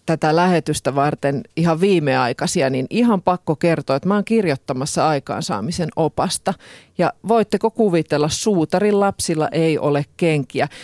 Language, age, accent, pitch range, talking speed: Finnish, 40-59, native, 150-185 Hz, 125 wpm